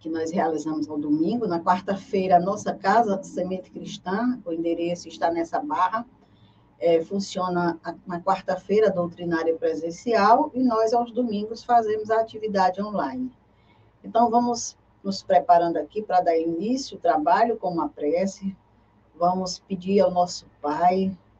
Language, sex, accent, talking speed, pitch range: Portuguese, female, Brazilian, 145 wpm, 160-195 Hz